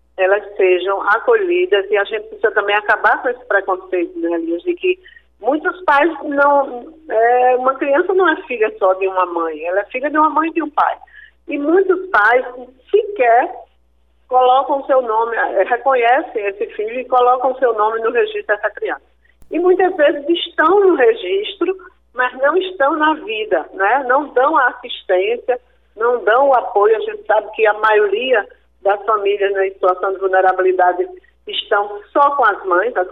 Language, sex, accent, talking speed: Portuguese, female, Brazilian, 180 wpm